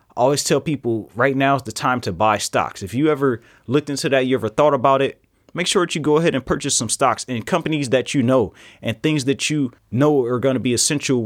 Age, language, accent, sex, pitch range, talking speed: 30-49, English, American, male, 115-145 Hz, 255 wpm